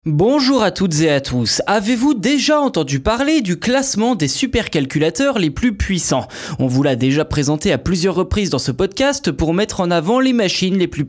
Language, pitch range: French, 155-235 Hz